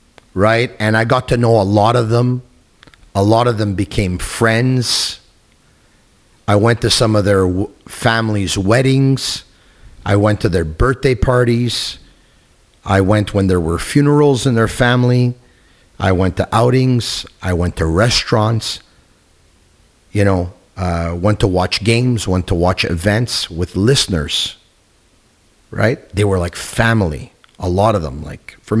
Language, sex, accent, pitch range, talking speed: English, male, American, 90-115 Hz, 150 wpm